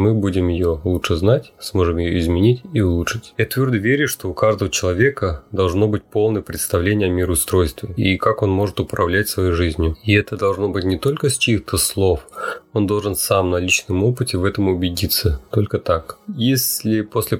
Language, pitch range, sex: Russian, 90-110 Hz, male